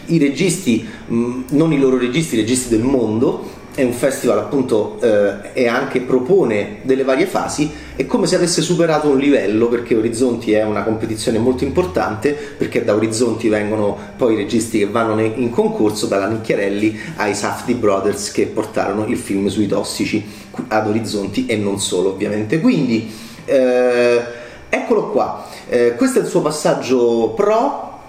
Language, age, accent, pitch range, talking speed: Italian, 30-49, native, 110-130 Hz, 155 wpm